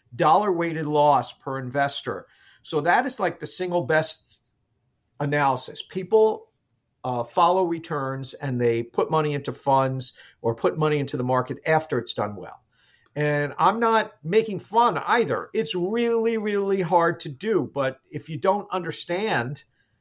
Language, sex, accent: English, male, American